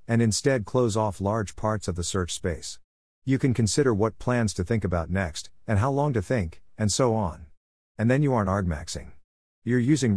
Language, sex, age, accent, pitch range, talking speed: English, male, 50-69, American, 90-115 Hz, 200 wpm